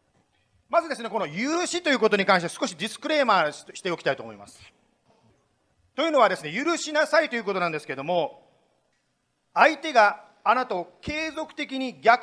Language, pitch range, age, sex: Japanese, 195-280 Hz, 40-59, male